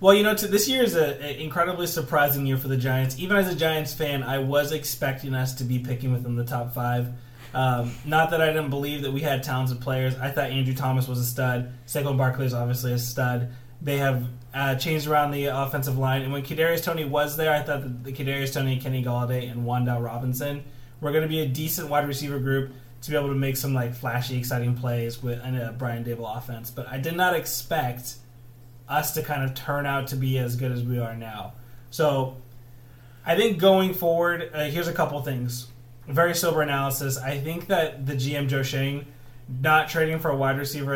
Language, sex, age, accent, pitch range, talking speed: English, male, 20-39, American, 125-145 Hz, 215 wpm